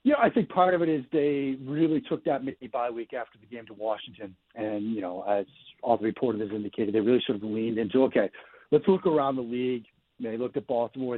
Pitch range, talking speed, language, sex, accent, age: 110-145 Hz, 240 wpm, English, male, American, 50-69